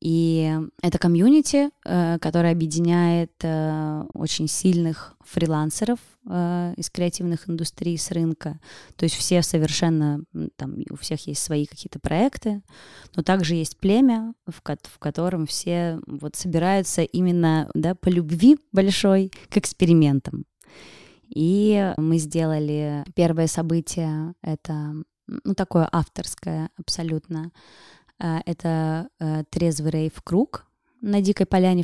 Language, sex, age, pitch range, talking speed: Russian, female, 20-39, 155-180 Hz, 105 wpm